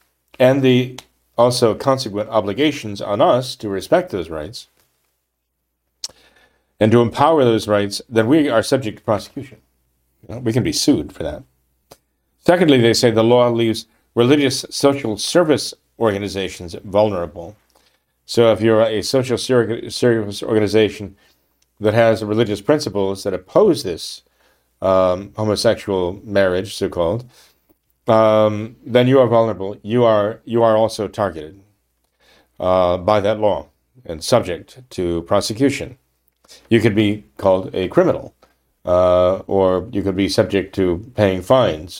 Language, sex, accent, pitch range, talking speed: English, male, American, 95-115 Hz, 130 wpm